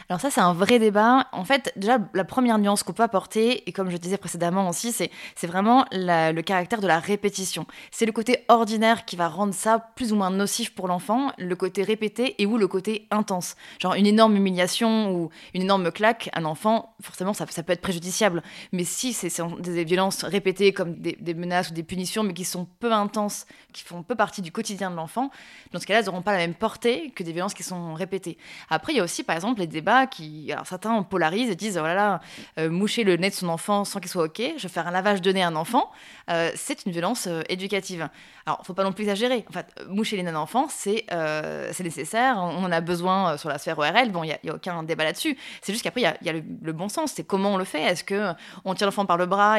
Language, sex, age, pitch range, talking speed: French, female, 20-39, 170-215 Hz, 260 wpm